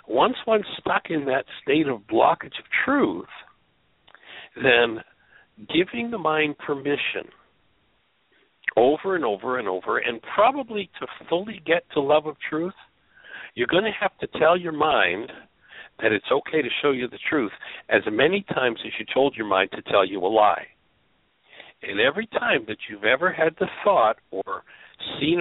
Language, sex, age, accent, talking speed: English, male, 60-79, American, 165 wpm